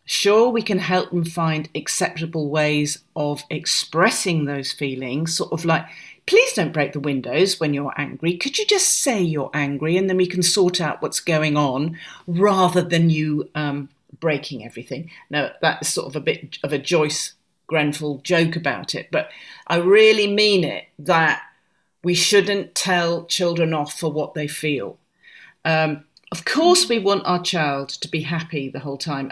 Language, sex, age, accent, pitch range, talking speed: English, female, 40-59, British, 150-190 Hz, 175 wpm